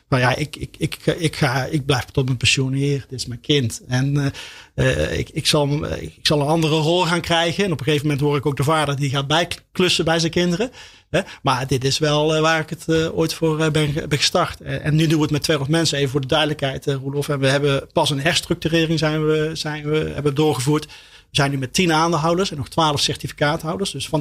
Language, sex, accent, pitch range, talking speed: Dutch, male, Dutch, 140-160 Hz, 235 wpm